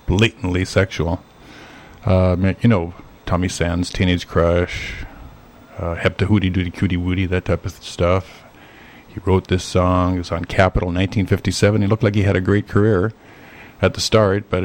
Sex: male